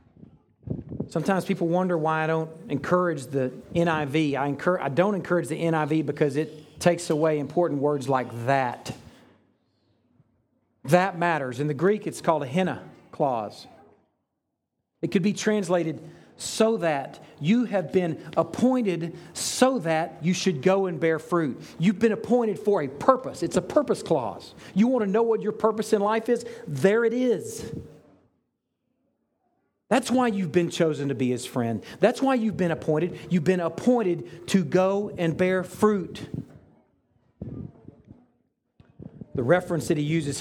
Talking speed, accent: 150 wpm, American